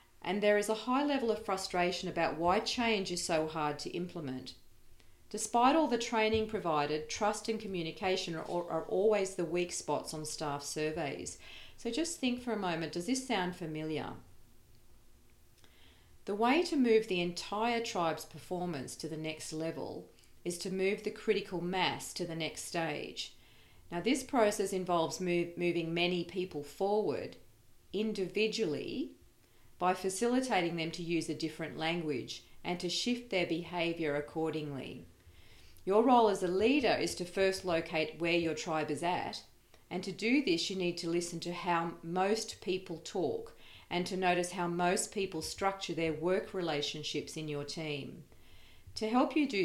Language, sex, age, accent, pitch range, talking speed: English, female, 40-59, Australian, 155-210 Hz, 160 wpm